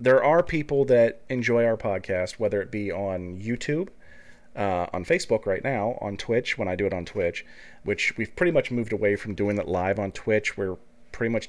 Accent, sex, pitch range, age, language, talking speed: American, male, 100-125 Hz, 30-49, English, 210 wpm